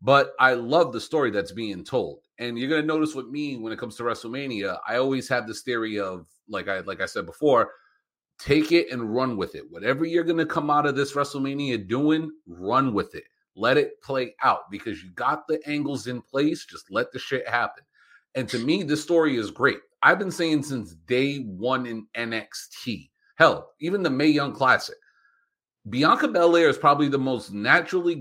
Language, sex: English, male